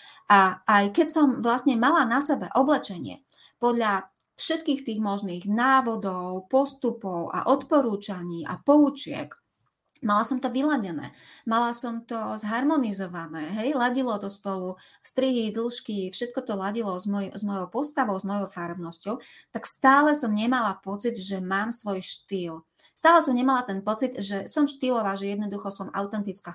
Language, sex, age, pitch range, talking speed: Slovak, female, 30-49, 195-265 Hz, 145 wpm